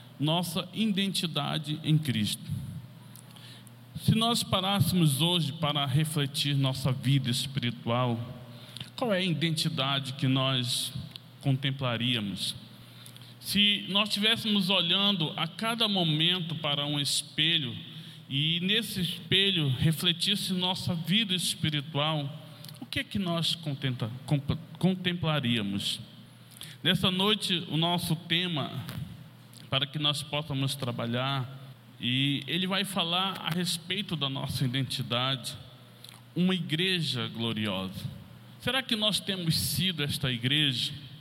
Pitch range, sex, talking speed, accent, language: 135-180 Hz, male, 105 wpm, Brazilian, Portuguese